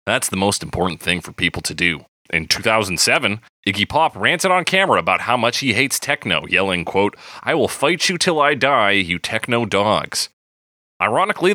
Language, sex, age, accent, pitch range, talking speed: English, male, 30-49, American, 95-135 Hz, 180 wpm